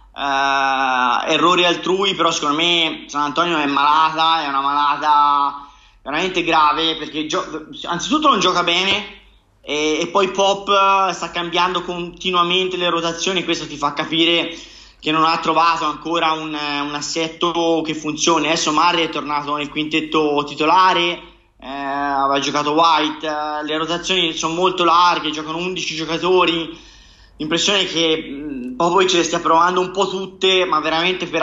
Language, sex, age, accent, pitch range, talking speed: Italian, male, 20-39, native, 150-175 Hz, 140 wpm